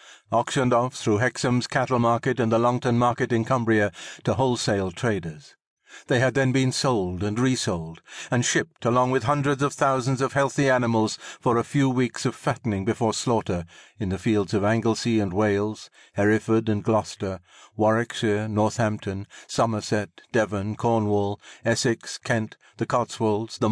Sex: male